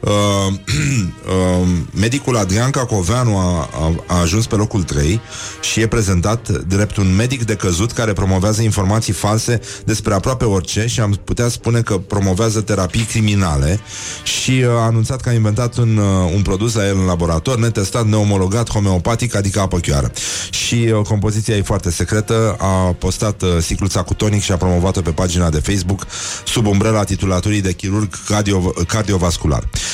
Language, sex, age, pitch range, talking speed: Romanian, male, 30-49, 95-115 Hz, 160 wpm